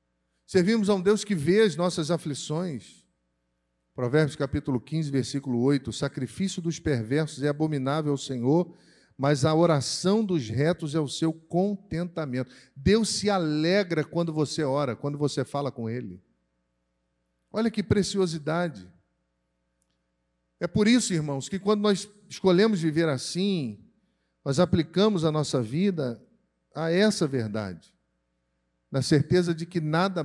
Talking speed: 135 wpm